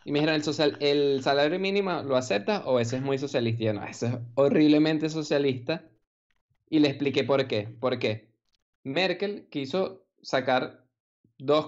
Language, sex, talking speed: Spanish, male, 165 wpm